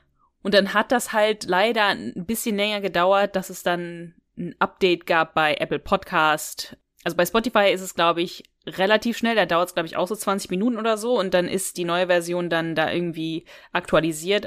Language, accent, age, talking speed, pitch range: German, German, 20-39, 205 wpm, 160-190 Hz